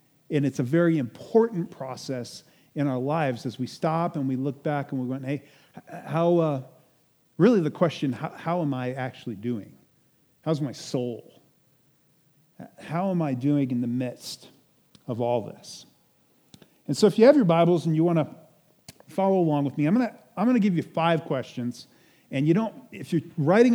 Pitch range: 140-185 Hz